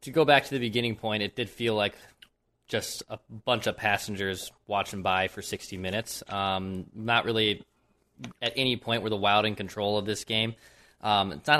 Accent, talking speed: American, 195 wpm